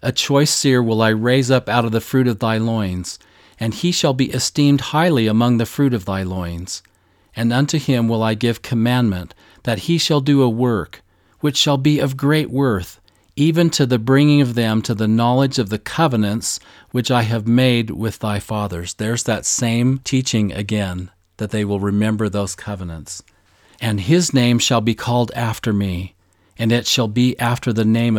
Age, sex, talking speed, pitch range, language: 40-59, male, 190 wpm, 105-130 Hz, English